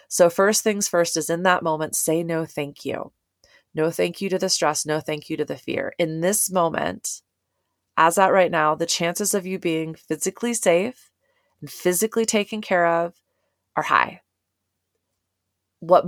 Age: 30-49